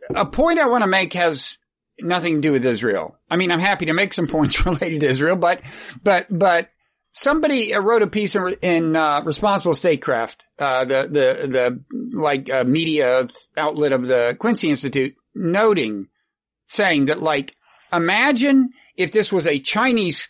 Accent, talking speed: American, 165 wpm